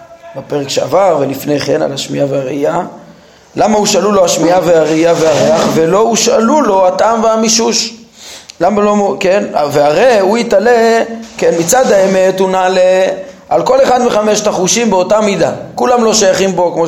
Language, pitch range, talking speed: Hebrew, 175-230 Hz, 140 wpm